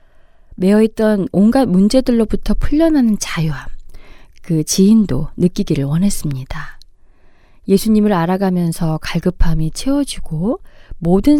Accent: native